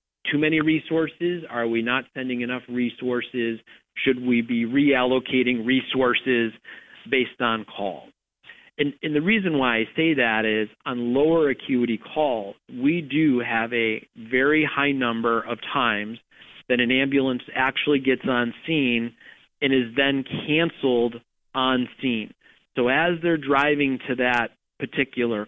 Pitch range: 120-140 Hz